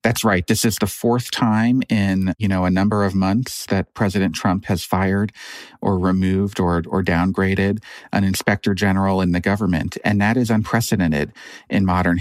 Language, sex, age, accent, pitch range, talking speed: English, male, 40-59, American, 95-110 Hz, 175 wpm